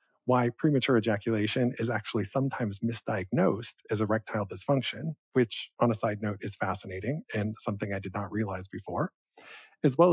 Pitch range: 105-135 Hz